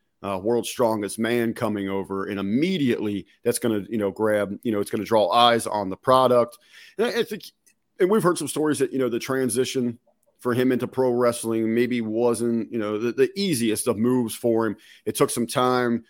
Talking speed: 215 wpm